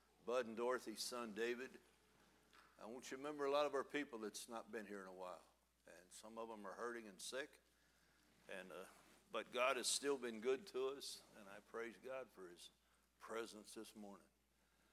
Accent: American